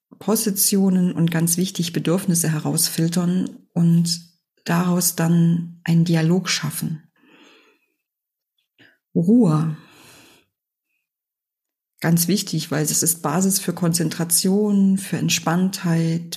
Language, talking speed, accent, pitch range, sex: German, 85 wpm, German, 165-190 Hz, female